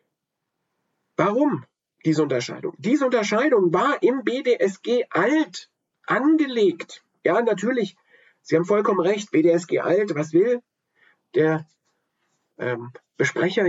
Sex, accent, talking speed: male, German, 90 wpm